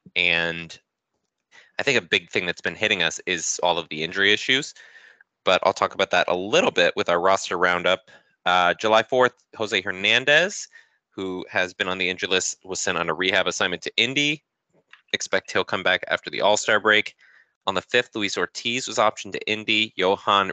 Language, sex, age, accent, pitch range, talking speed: English, male, 20-39, American, 90-110 Hz, 195 wpm